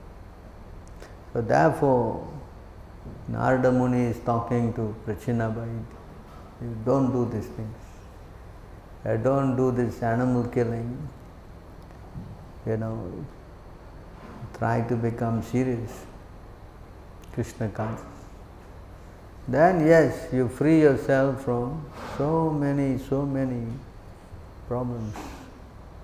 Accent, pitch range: Indian, 95-135 Hz